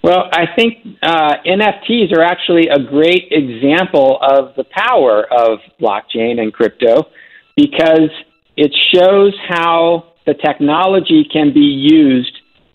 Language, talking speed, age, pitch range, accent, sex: English, 120 wpm, 50-69, 125-165 Hz, American, male